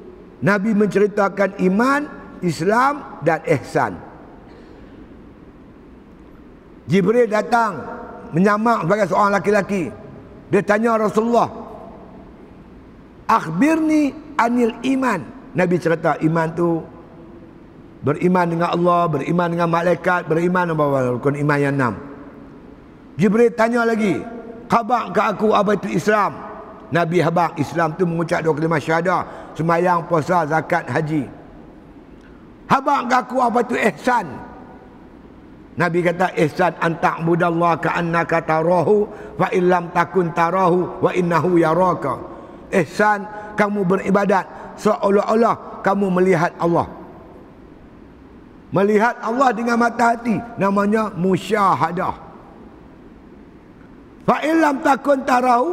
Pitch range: 170-230 Hz